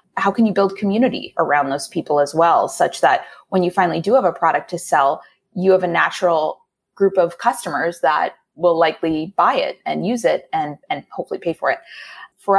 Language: English